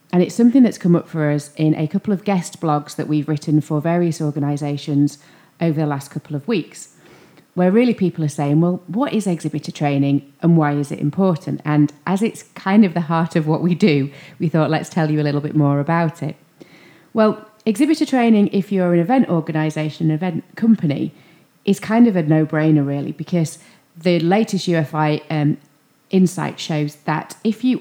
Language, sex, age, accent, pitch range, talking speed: English, female, 30-49, British, 150-185 Hz, 195 wpm